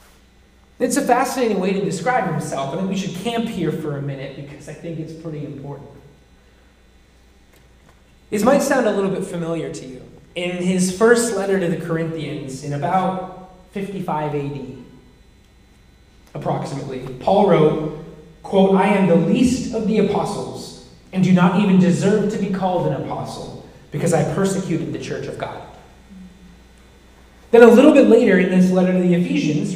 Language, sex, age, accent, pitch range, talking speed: English, male, 20-39, American, 145-195 Hz, 160 wpm